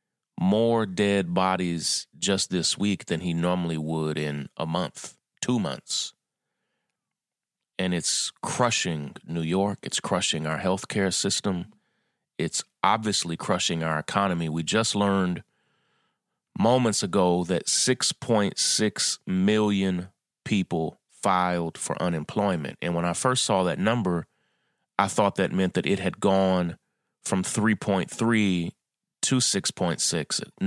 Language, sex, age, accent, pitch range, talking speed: English, male, 30-49, American, 85-100 Hz, 115 wpm